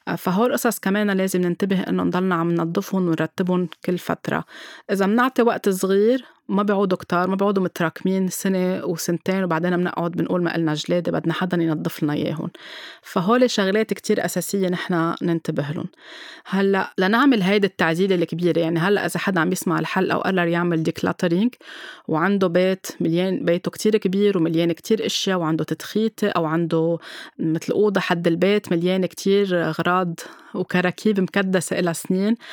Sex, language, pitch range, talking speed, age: female, Arabic, 170-200 Hz, 155 wpm, 20-39